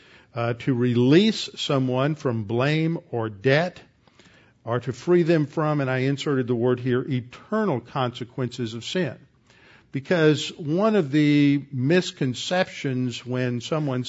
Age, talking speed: 50-69, 130 wpm